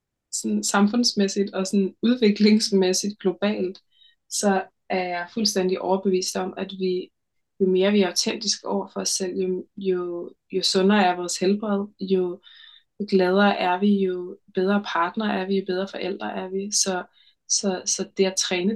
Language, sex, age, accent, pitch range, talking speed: Danish, female, 20-39, native, 185-205 Hz, 165 wpm